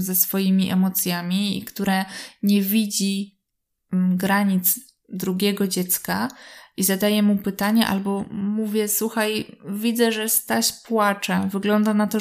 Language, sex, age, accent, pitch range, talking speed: Polish, female, 20-39, native, 185-215 Hz, 120 wpm